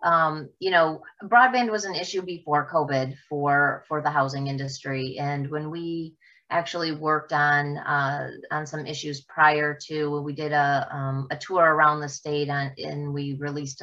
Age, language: 30-49, English